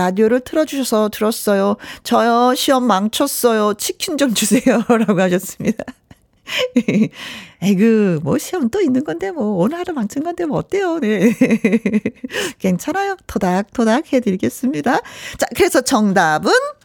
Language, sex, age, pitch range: Korean, female, 40-59, 195-275 Hz